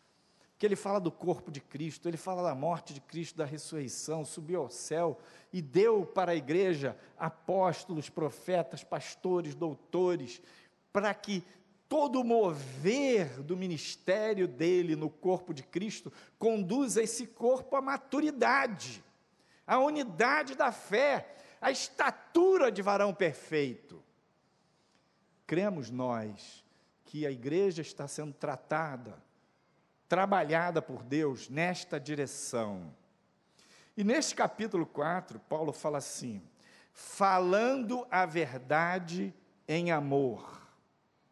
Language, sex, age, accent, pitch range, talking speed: Portuguese, male, 50-69, Brazilian, 150-200 Hz, 115 wpm